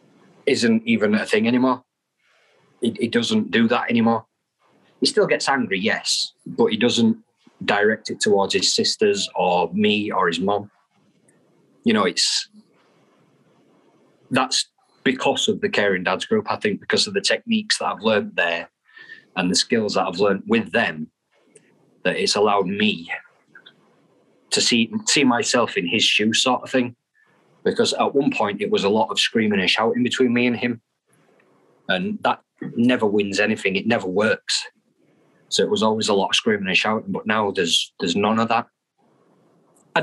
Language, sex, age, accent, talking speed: English, male, 30-49, British, 170 wpm